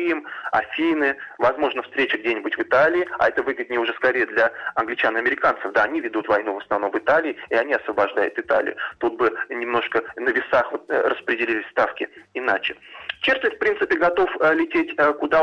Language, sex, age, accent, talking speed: Russian, male, 20-39, native, 150 wpm